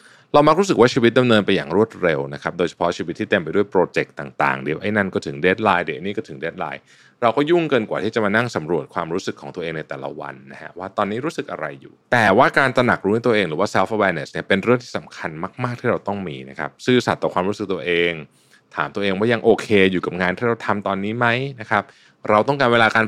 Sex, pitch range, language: male, 85-120 Hz, Thai